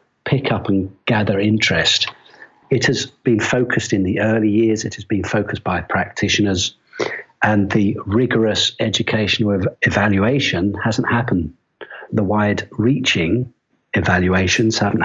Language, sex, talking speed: English, male, 125 wpm